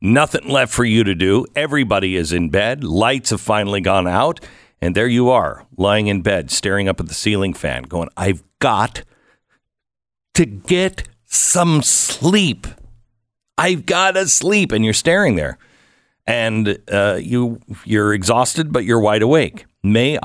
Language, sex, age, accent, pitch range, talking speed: English, male, 50-69, American, 95-125 Hz, 155 wpm